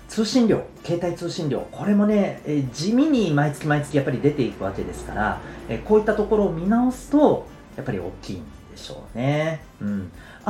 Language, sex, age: Japanese, male, 40-59